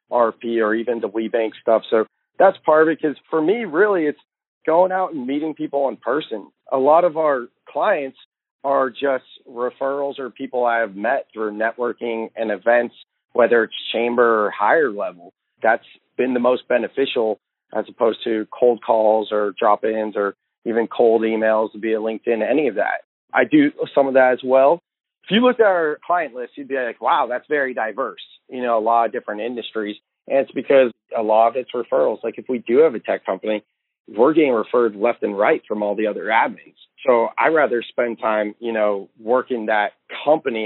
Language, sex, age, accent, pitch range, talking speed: English, male, 40-59, American, 110-135 Hz, 195 wpm